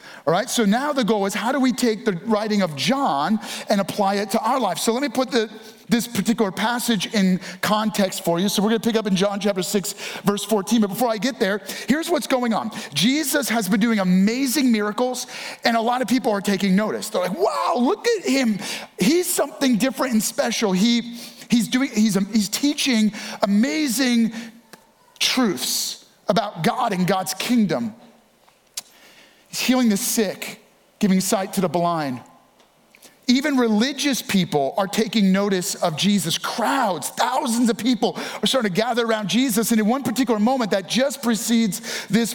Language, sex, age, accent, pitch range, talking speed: English, male, 40-59, American, 200-245 Hz, 175 wpm